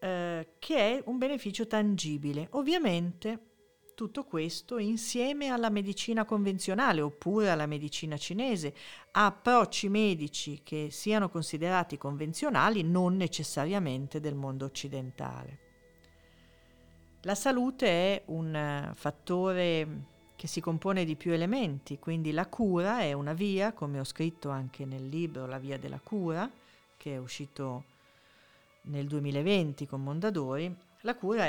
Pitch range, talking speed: 145-205 Hz, 120 wpm